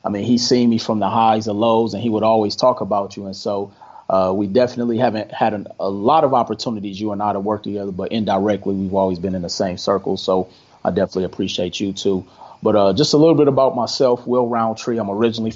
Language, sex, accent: English, male, American